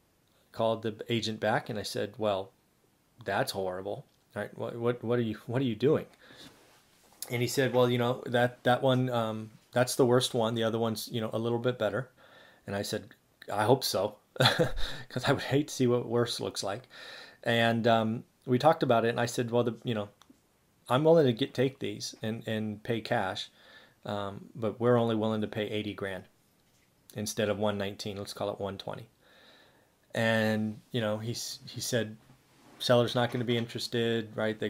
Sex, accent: male, American